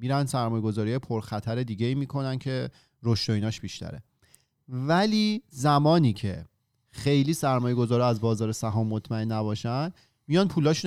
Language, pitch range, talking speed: Persian, 115-145 Hz, 125 wpm